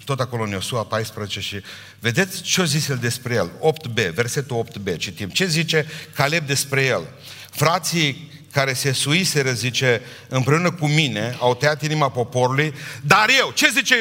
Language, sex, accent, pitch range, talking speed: Romanian, male, native, 150-245 Hz, 160 wpm